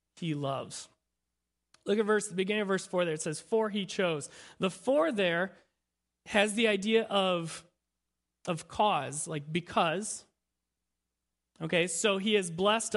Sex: male